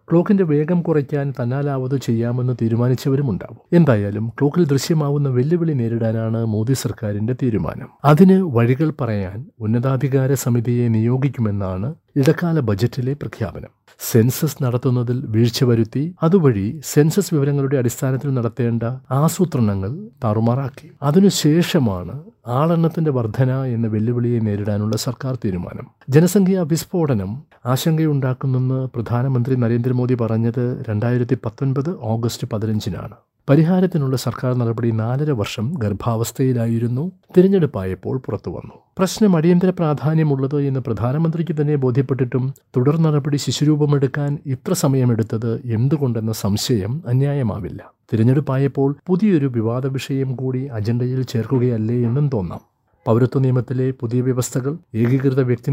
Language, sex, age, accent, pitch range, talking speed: Malayalam, male, 60-79, native, 115-145 Hz, 95 wpm